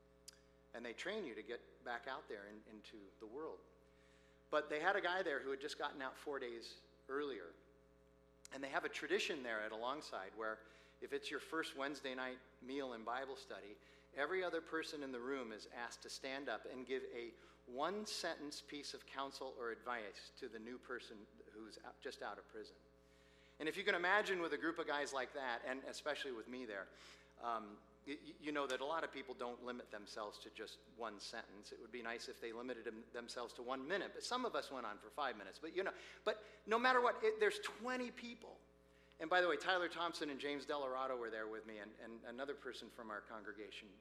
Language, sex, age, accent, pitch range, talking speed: English, male, 40-59, American, 110-175 Hz, 215 wpm